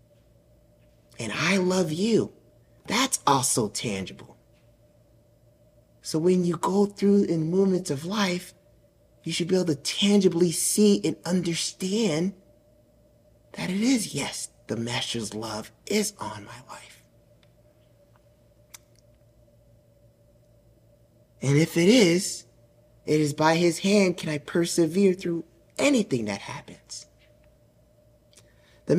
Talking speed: 110 wpm